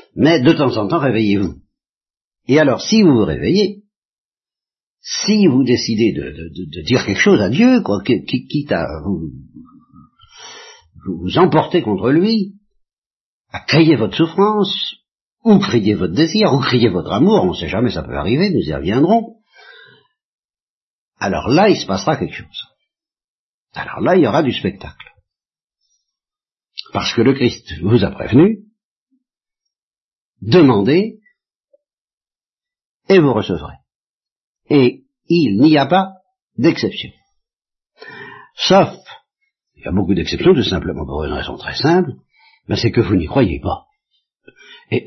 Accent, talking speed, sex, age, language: French, 140 wpm, male, 60-79, French